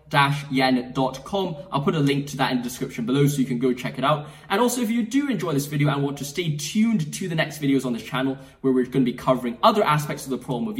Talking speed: 280 wpm